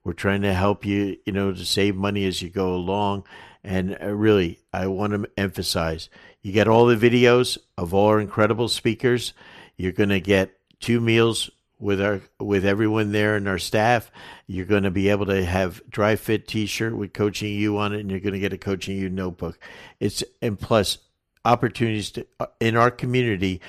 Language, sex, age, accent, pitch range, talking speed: English, male, 50-69, American, 95-110 Hz, 195 wpm